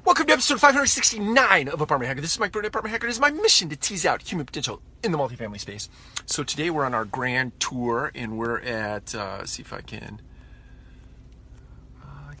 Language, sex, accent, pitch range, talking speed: English, male, American, 110-155 Hz, 205 wpm